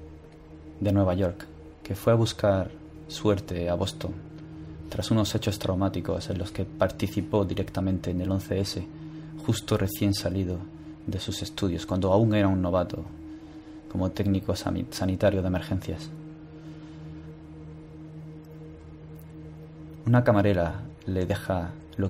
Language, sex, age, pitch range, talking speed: Spanish, male, 20-39, 80-100 Hz, 115 wpm